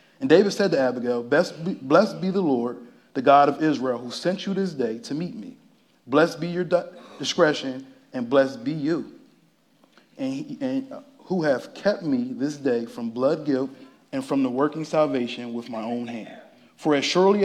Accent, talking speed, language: American, 175 wpm, English